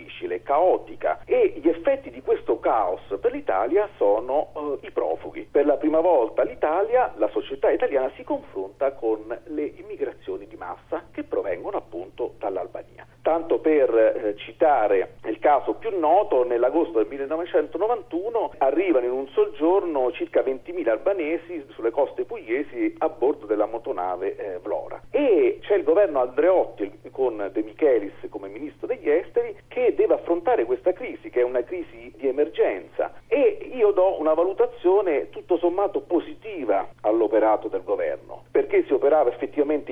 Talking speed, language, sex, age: 145 wpm, Italian, male, 50-69